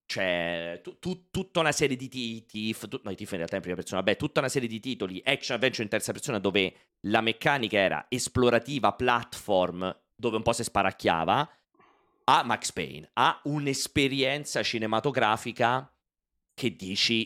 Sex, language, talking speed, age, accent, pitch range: male, Italian, 175 wpm, 30-49, native, 105-125 Hz